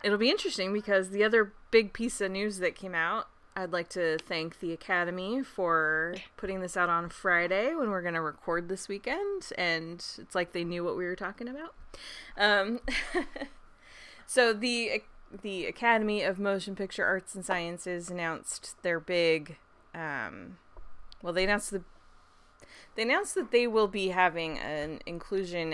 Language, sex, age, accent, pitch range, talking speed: English, female, 20-39, American, 170-220 Hz, 160 wpm